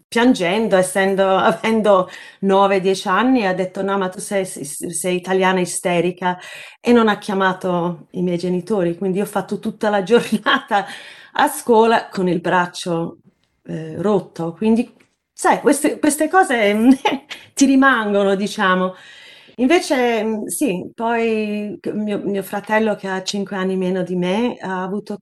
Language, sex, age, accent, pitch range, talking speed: Italian, female, 30-49, native, 180-220 Hz, 140 wpm